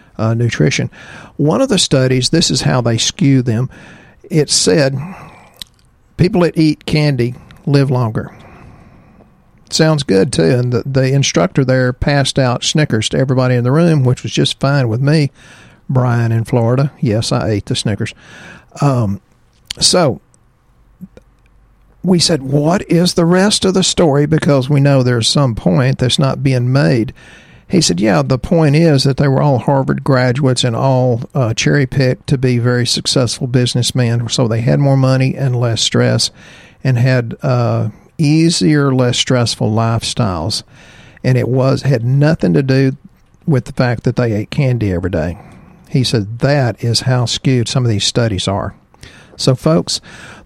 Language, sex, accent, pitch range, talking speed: English, male, American, 120-145 Hz, 160 wpm